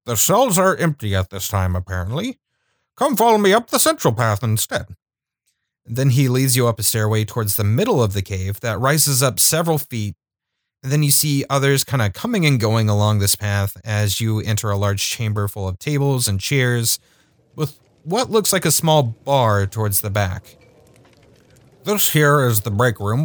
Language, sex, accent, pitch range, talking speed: English, male, American, 100-135 Hz, 190 wpm